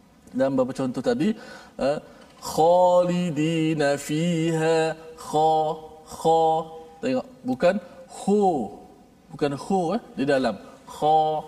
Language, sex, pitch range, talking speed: Malayalam, male, 160-245 Hz, 100 wpm